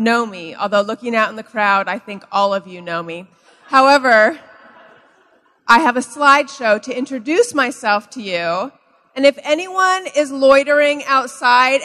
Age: 30-49